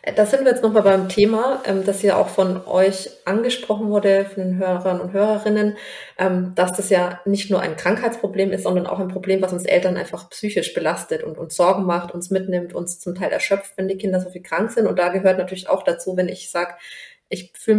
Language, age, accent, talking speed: German, 20-39, German, 220 wpm